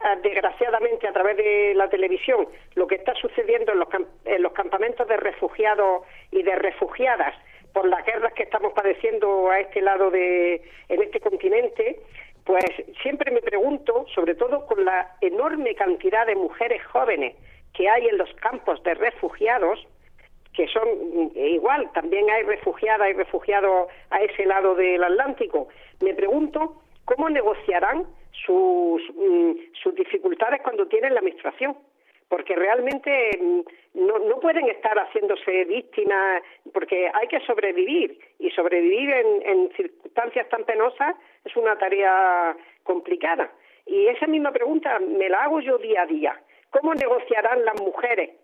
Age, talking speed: 50-69, 145 wpm